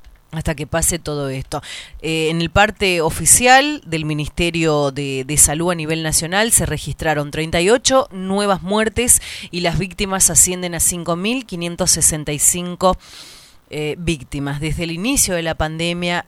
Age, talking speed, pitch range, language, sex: 30-49, 135 wpm, 155-205 Hz, Spanish, female